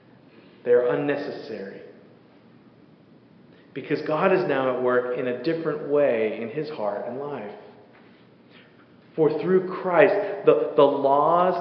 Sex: male